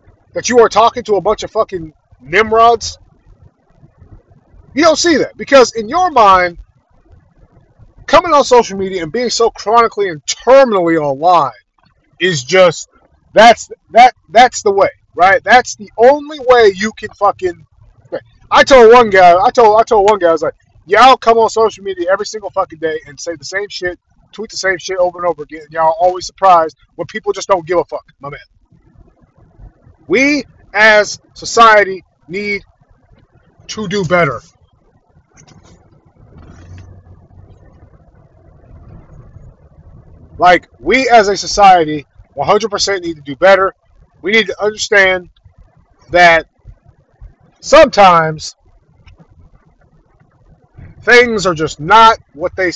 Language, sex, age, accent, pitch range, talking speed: English, male, 30-49, American, 160-225 Hz, 140 wpm